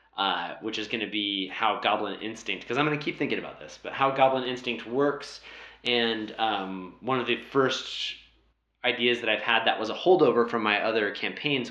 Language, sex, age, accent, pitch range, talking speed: English, male, 30-49, American, 95-120 Hz, 195 wpm